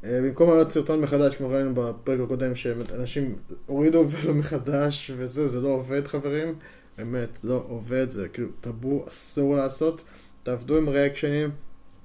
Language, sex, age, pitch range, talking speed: Hebrew, male, 20-39, 120-145 Hz, 140 wpm